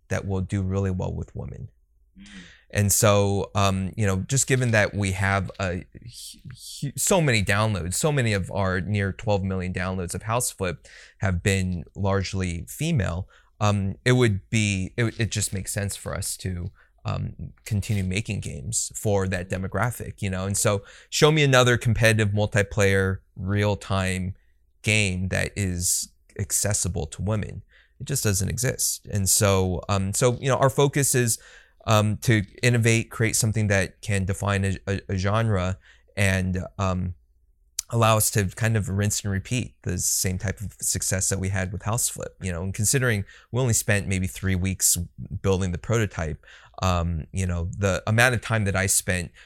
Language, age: English, 20-39